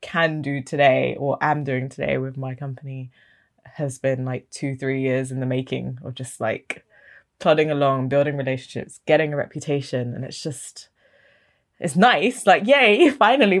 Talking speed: 165 wpm